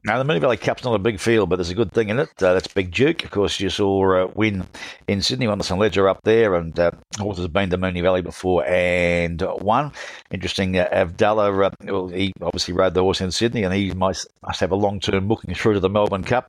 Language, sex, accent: English, male, Australian